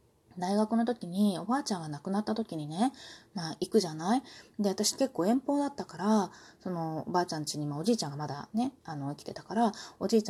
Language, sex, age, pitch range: Japanese, female, 20-39, 170-250 Hz